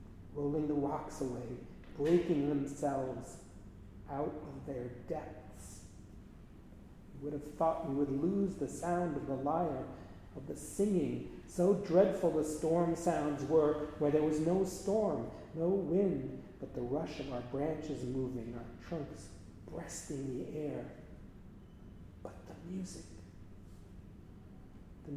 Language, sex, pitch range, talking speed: English, male, 100-155 Hz, 130 wpm